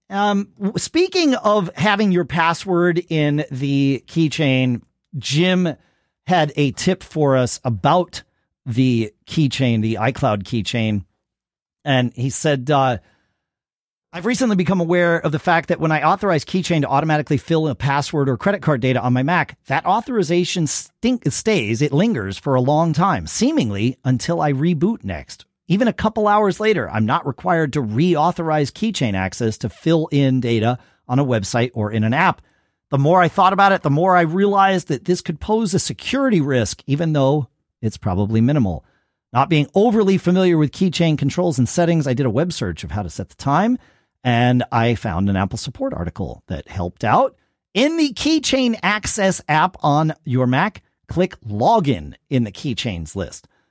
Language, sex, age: English, male, 40-59